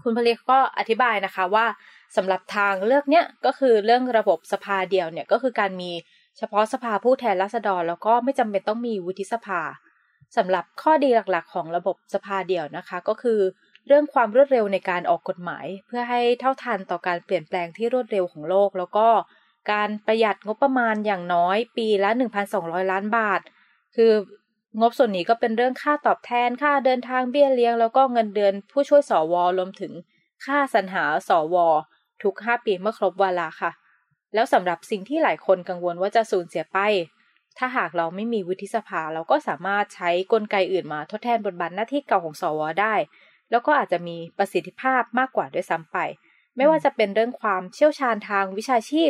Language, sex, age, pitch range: Thai, female, 20-39, 185-240 Hz